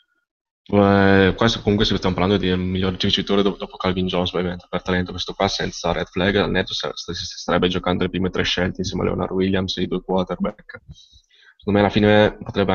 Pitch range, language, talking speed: 90-105 Hz, Italian, 200 wpm